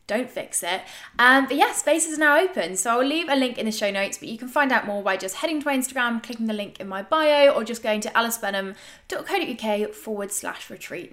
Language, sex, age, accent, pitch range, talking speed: English, female, 20-39, British, 205-275 Hz, 245 wpm